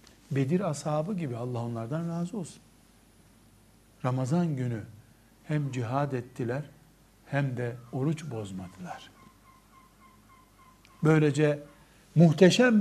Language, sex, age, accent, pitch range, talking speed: Turkish, male, 60-79, native, 115-160 Hz, 85 wpm